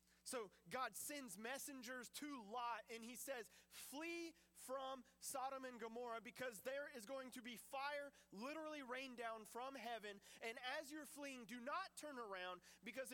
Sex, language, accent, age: male, English, American, 30-49